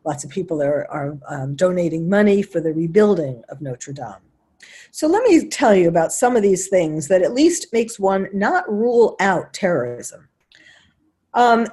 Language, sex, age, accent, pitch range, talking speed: English, female, 50-69, American, 170-245 Hz, 175 wpm